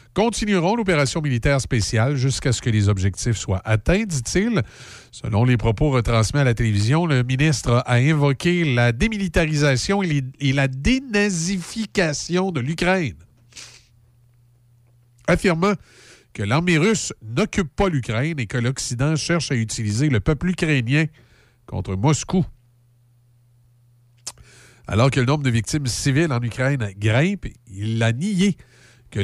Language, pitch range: French, 115-155 Hz